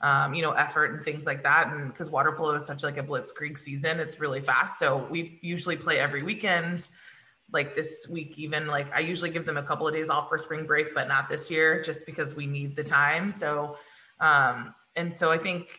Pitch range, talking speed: 145-170 Hz, 230 wpm